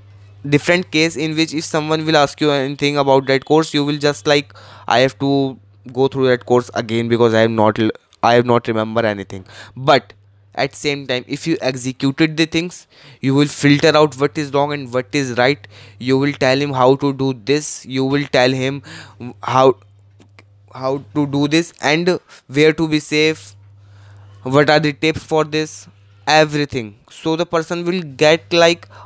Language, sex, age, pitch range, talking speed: Hindi, male, 20-39, 115-150 Hz, 185 wpm